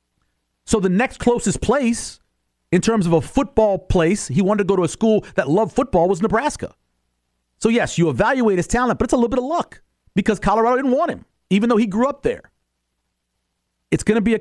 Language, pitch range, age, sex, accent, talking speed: English, 145-225 Hz, 40-59, male, American, 215 wpm